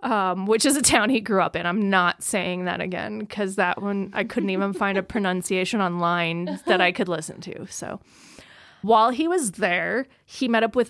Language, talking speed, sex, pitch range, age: English, 210 wpm, female, 190-245 Hz, 20-39